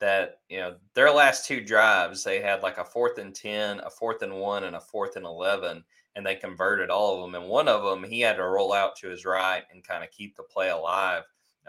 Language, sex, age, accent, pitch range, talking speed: English, male, 20-39, American, 90-110 Hz, 250 wpm